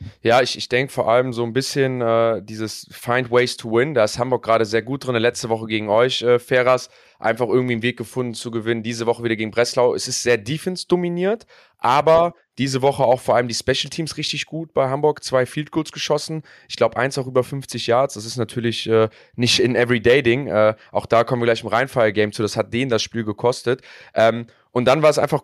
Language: German